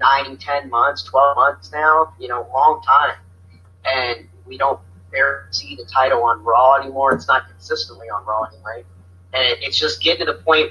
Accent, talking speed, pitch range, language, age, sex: American, 195 wpm, 90-140 Hz, English, 40-59, male